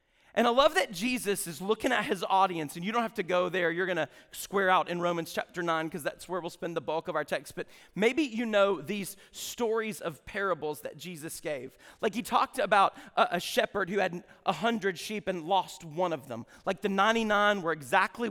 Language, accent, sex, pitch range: English, American, male, 175-220 Hz